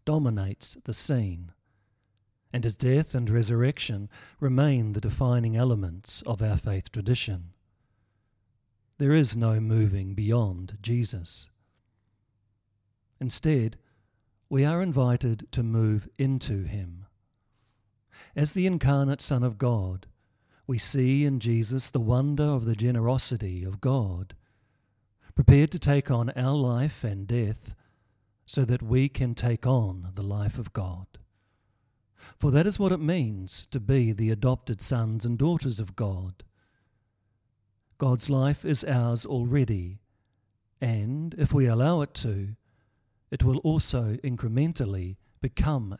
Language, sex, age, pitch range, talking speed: English, male, 50-69, 105-130 Hz, 125 wpm